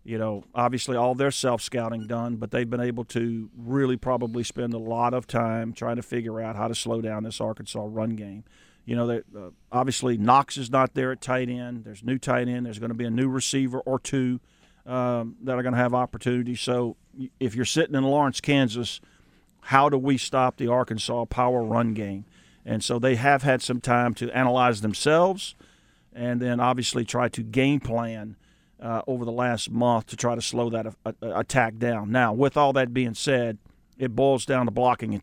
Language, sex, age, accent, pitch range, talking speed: English, male, 40-59, American, 115-130 Hz, 205 wpm